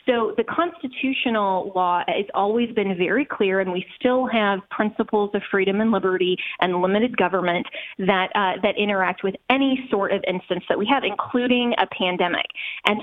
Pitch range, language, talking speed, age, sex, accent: 195-240 Hz, English, 170 wpm, 20-39, female, American